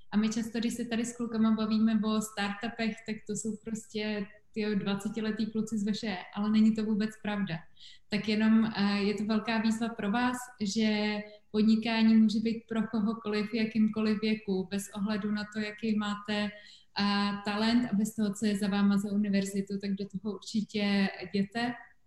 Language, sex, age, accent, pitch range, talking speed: English, female, 20-39, Czech, 200-220 Hz, 170 wpm